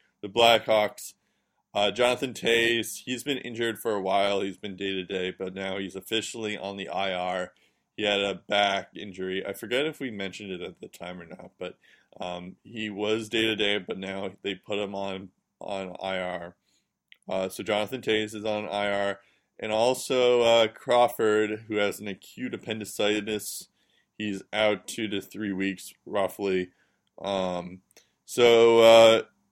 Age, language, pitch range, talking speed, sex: 20-39, English, 95-110 Hz, 155 wpm, male